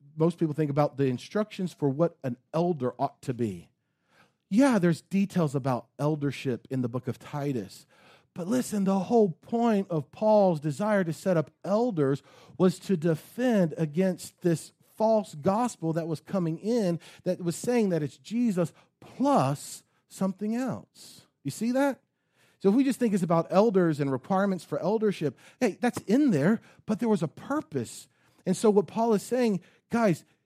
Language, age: English, 40-59